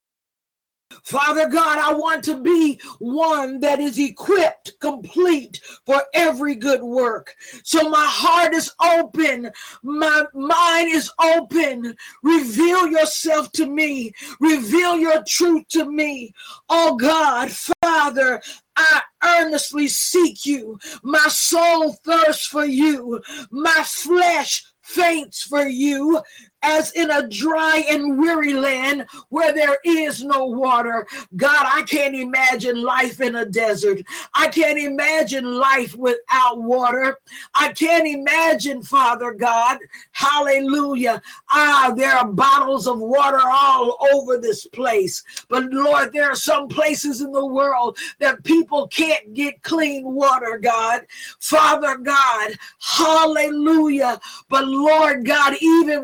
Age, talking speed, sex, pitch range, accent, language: 50-69, 125 wpm, female, 270-320 Hz, American, English